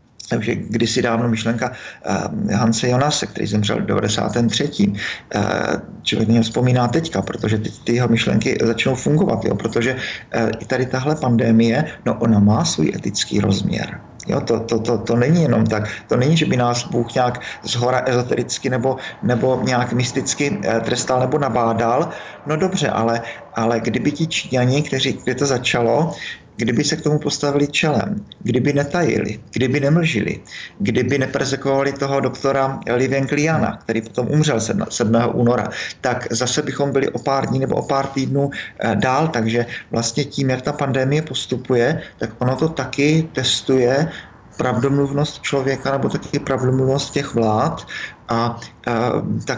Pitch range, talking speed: 115-140 Hz, 155 wpm